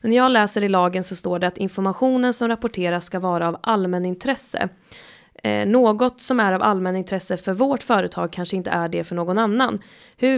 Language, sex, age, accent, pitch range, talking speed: Swedish, female, 20-39, native, 180-230 Hz, 200 wpm